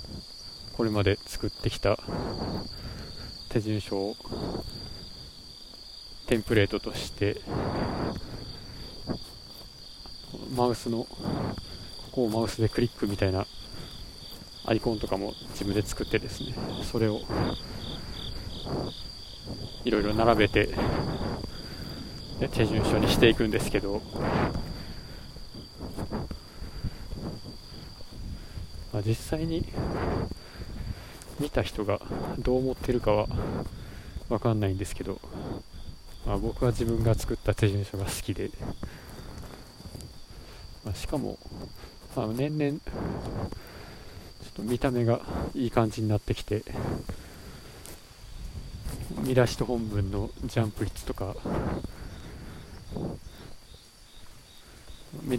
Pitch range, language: 100-120 Hz, Japanese